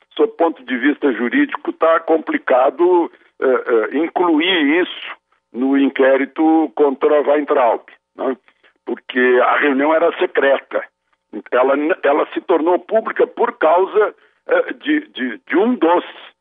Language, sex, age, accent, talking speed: Portuguese, male, 60-79, Brazilian, 125 wpm